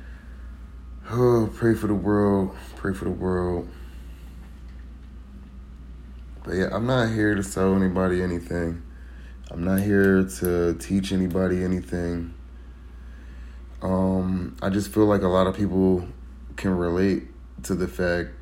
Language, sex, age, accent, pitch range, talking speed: English, male, 30-49, American, 65-95 Hz, 125 wpm